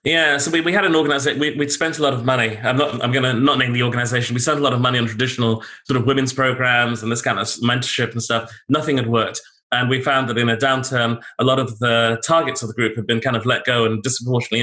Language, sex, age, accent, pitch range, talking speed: English, male, 30-49, British, 115-130 Hz, 280 wpm